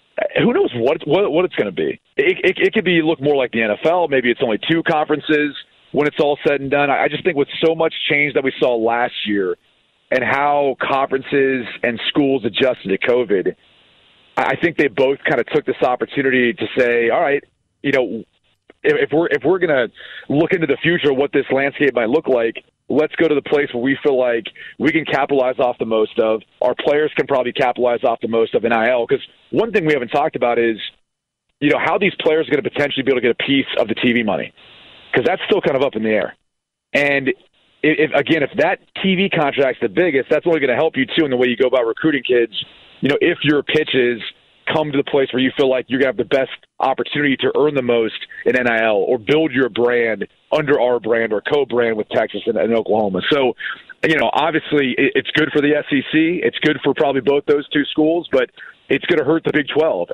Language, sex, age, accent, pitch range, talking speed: English, male, 40-59, American, 120-155 Hz, 230 wpm